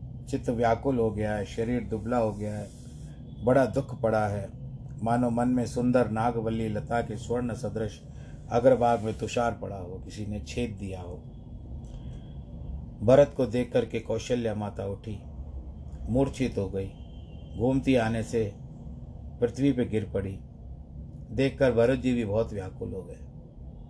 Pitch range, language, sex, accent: 105-140 Hz, Hindi, male, native